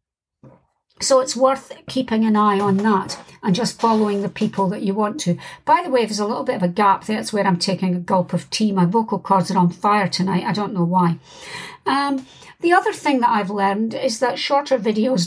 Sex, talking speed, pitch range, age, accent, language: female, 225 wpm, 200-260 Hz, 60-79, British, English